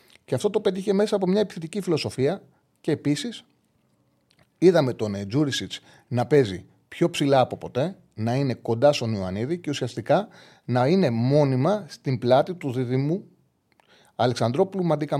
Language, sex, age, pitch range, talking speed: Greek, male, 30-49, 115-155 Hz, 140 wpm